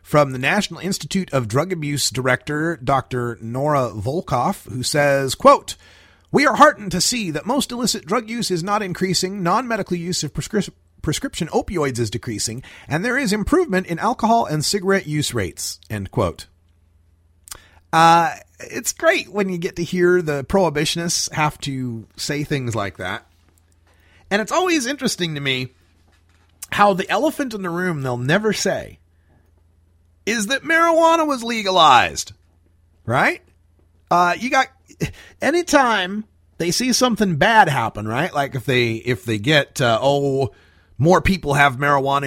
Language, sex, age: English, male, 30-49